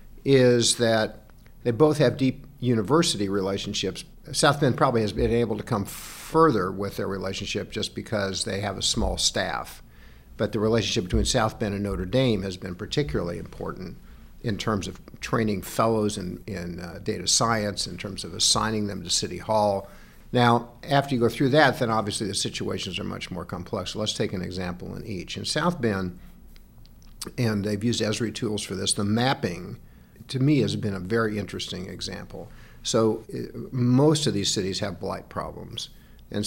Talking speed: 175 wpm